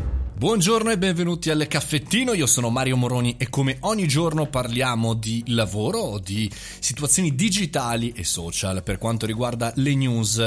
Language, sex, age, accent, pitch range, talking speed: Italian, male, 30-49, native, 105-140 Hz, 150 wpm